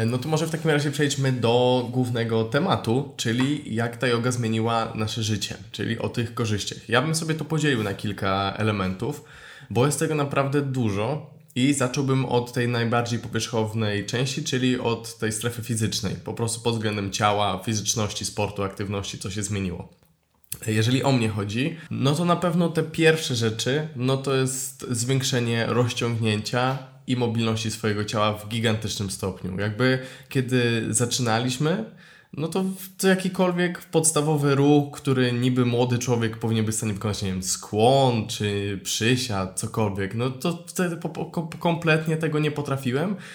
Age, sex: 20-39, male